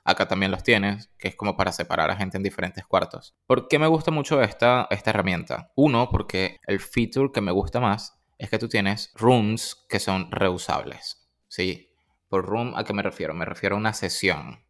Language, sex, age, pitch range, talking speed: Spanish, male, 20-39, 95-115 Hz, 205 wpm